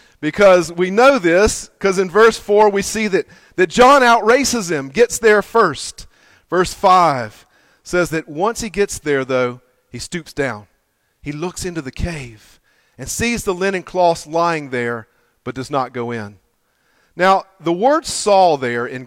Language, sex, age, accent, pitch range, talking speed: English, male, 40-59, American, 140-215 Hz, 165 wpm